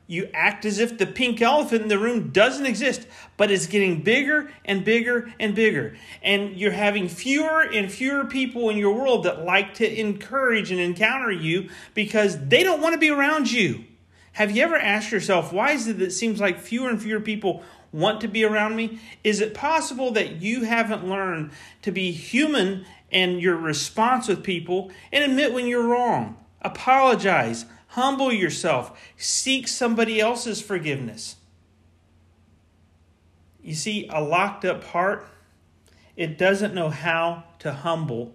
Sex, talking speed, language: male, 165 wpm, English